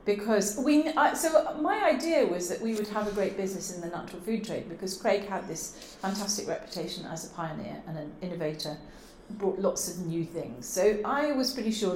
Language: English